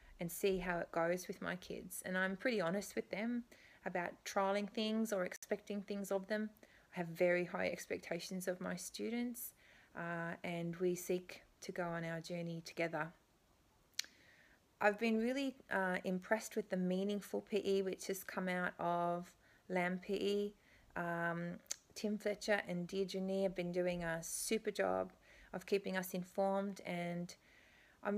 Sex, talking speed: female, 160 wpm